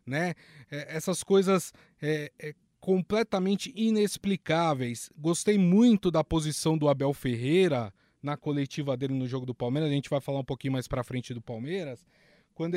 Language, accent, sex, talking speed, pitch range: Portuguese, Brazilian, male, 145 wpm, 145-195 Hz